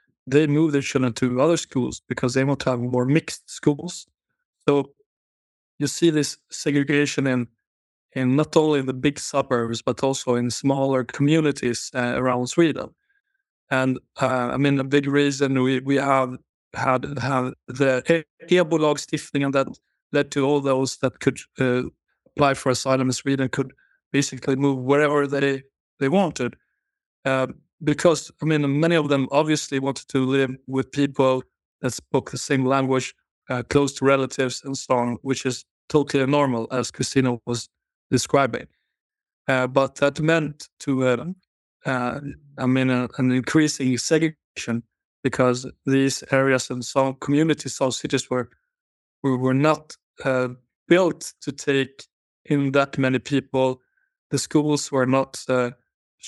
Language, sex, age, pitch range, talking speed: Finnish, male, 30-49, 130-145 Hz, 150 wpm